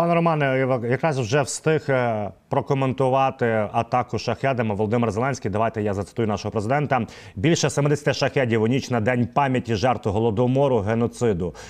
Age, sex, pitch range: 30-49, male, 110-135 Hz